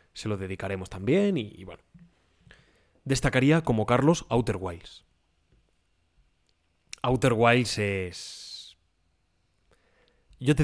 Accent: Spanish